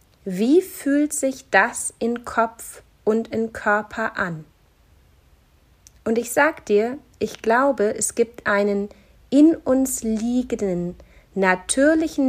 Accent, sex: German, female